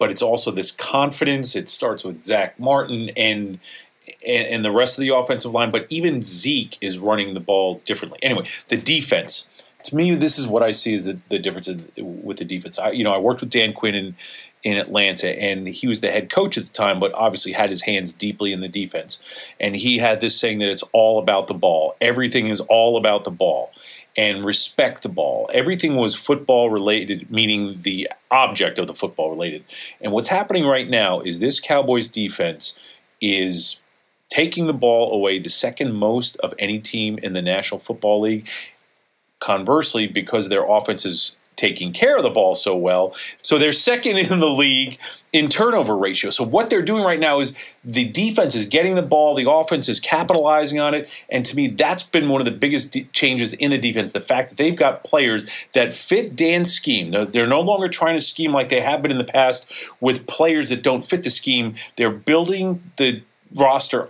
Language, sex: English, male